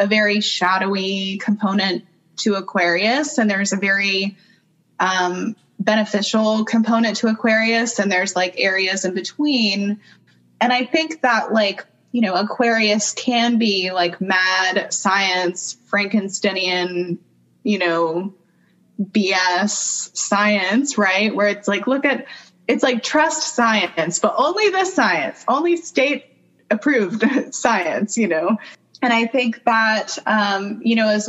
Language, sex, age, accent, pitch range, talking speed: English, female, 20-39, American, 190-225 Hz, 130 wpm